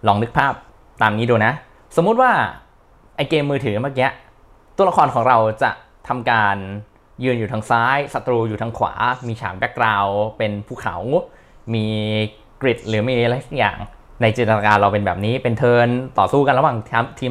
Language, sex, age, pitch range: Thai, male, 20-39, 105-130 Hz